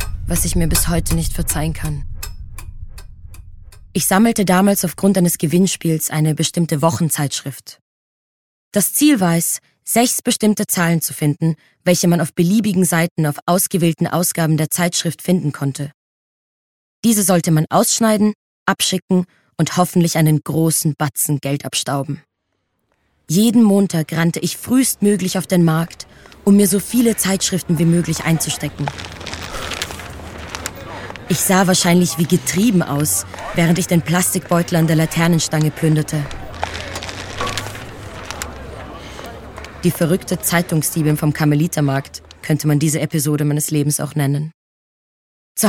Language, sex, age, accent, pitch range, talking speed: German, female, 20-39, German, 140-185 Hz, 125 wpm